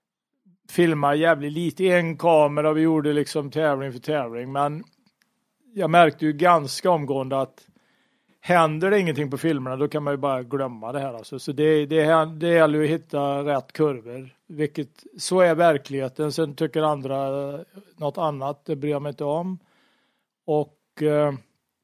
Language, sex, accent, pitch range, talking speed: Swedish, male, Norwegian, 145-180 Hz, 160 wpm